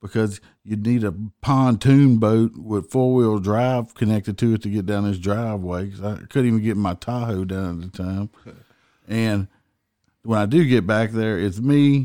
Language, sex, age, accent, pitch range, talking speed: English, male, 50-69, American, 95-115 Hz, 185 wpm